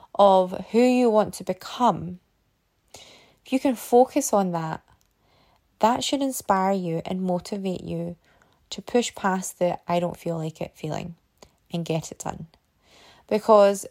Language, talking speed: English, 145 wpm